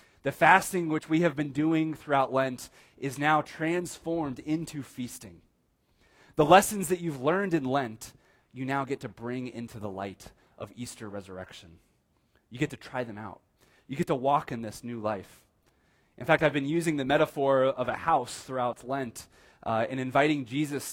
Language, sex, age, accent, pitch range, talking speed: English, male, 30-49, American, 125-160 Hz, 180 wpm